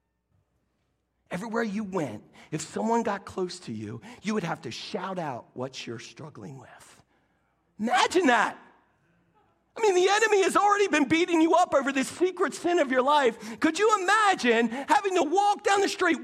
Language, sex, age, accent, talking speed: English, male, 50-69, American, 175 wpm